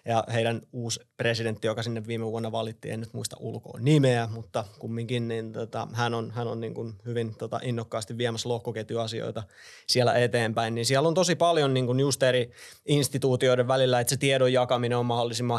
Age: 20-39